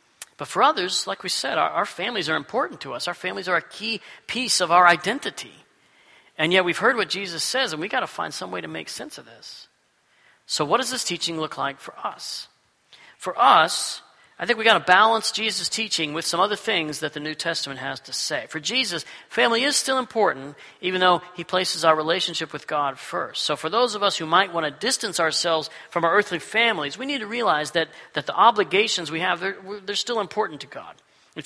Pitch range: 160-220 Hz